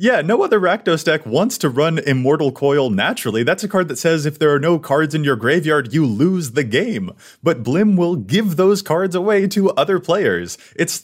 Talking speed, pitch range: 210 wpm, 115-170 Hz